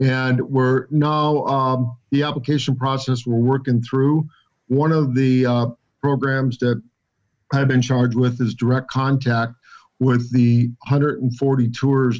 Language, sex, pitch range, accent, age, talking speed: English, male, 120-135 Hz, American, 50-69, 135 wpm